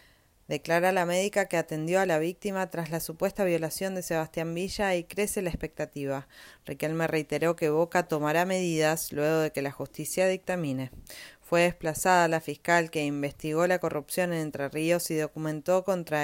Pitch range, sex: 150-180 Hz, female